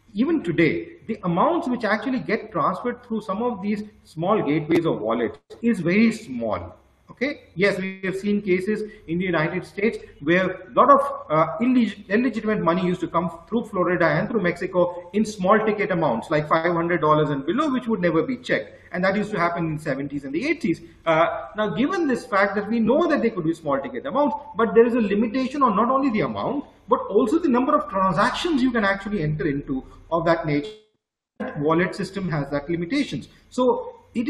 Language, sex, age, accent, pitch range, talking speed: English, male, 40-59, Indian, 170-230 Hz, 200 wpm